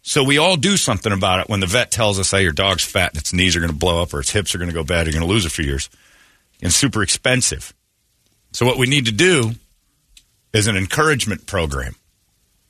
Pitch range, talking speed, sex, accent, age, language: 85-110 Hz, 255 wpm, male, American, 40-59, English